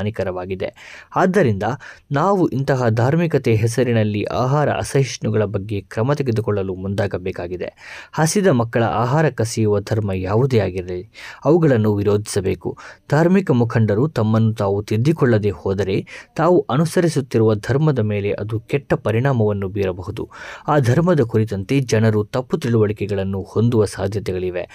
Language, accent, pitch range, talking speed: Kannada, native, 105-140 Hz, 100 wpm